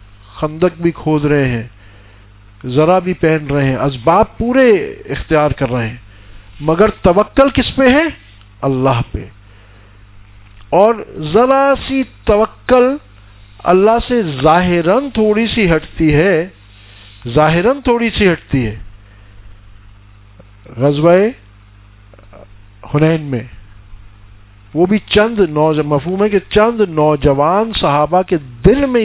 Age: 50-69